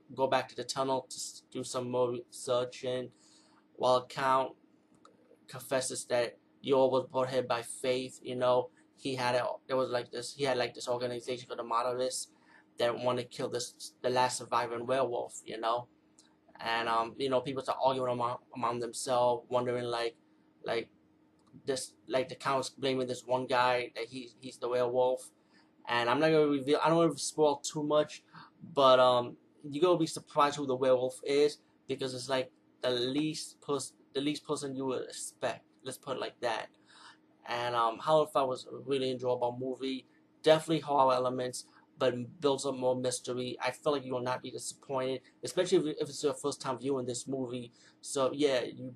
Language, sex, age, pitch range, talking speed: English, male, 20-39, 125-135 Hz, 185 wpm